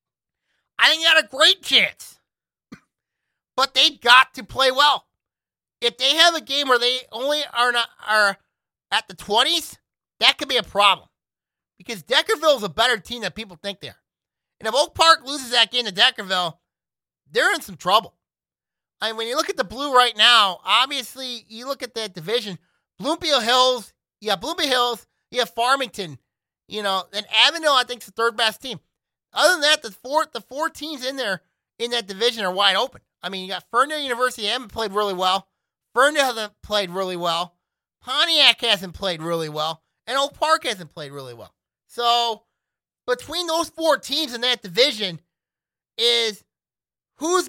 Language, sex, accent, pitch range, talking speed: English, male, American, 200-280 Hz, 185 wpm